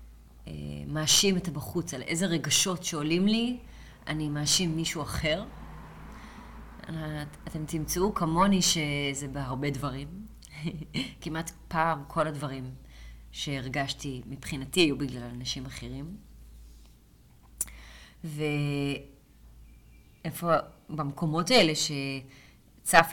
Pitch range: 135-165 Hz